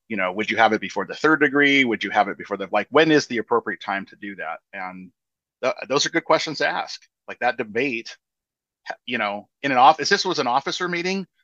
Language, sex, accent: English, male, American